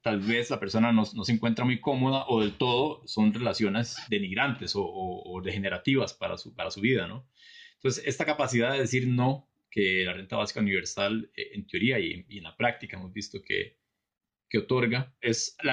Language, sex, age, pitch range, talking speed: Spanish, male, 30-49, 100-120 Hz, 190 wpm